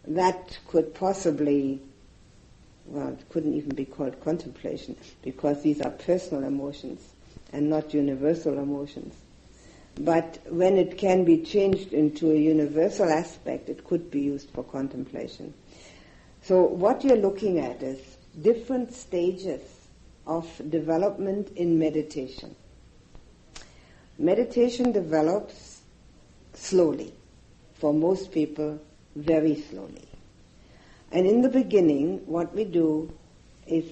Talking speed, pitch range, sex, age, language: 110 wpm, 150-180 Hz, female, 60-79, English